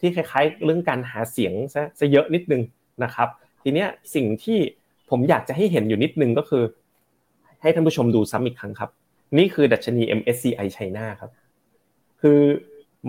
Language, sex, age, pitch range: Thai, male, 20-39, 115-155 Hz